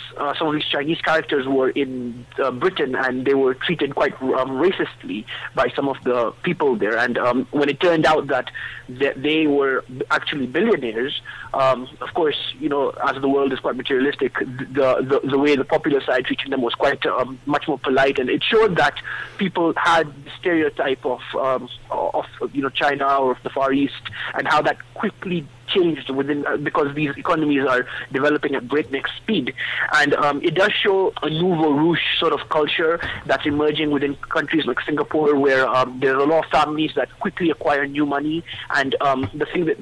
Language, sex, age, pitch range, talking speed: English, male, 20-39, 130-150 Hz, 195 wpm